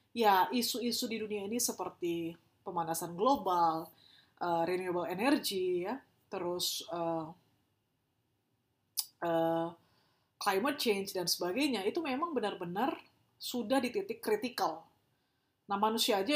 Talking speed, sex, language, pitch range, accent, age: 105 wpm, female, Indonesian, 175-225 Hz, native, 30-49